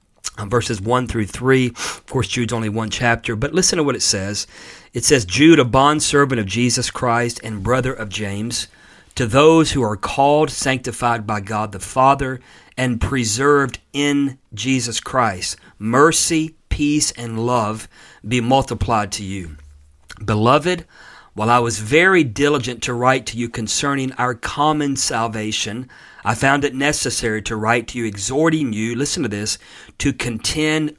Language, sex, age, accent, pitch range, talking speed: English, male, 40-59, American, 105-130 Hz, 155 wpm